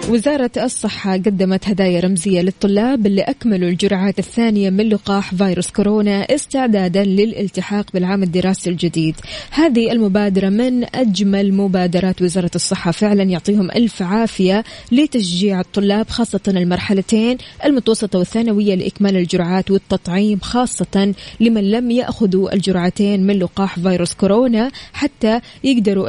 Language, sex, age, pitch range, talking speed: Arabic, female, 20-39, 190-235 Hz, 115 wpm